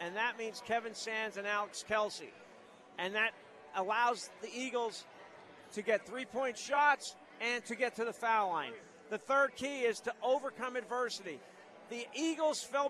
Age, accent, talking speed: 50-69, American, 160 wpm